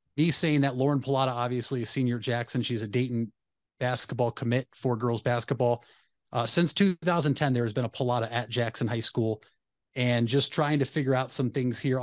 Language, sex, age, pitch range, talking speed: English, male, 30-49, 120-140 Hz, 195 wpm